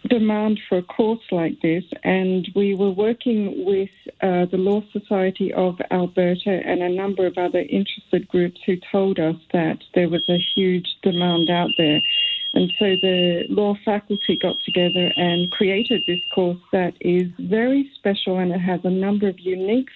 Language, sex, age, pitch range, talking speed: English, female, 50-69, 175-200 Hz, 170 wpm